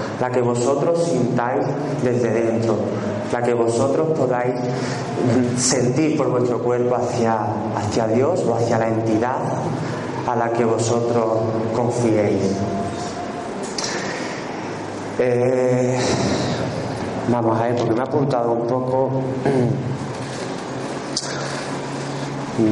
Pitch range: 110-125 Hz